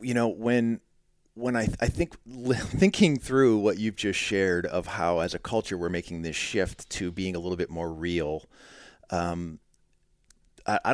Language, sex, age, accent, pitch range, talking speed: English, male, 40-59, American, 80-95 Hz, 170 wpm